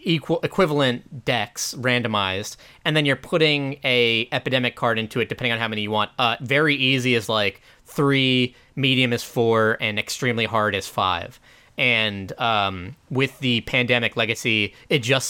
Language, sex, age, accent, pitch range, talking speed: English, male, 20-39, American, 110-135 Hz, 160 wpm